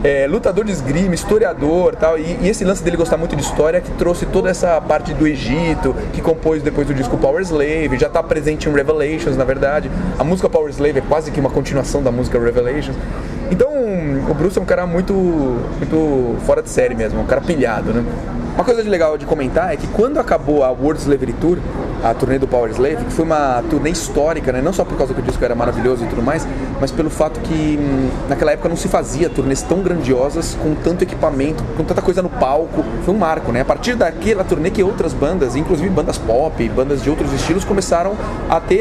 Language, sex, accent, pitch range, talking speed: Portuguese, male, Brazilian, 135-170 Hz, 225 wpm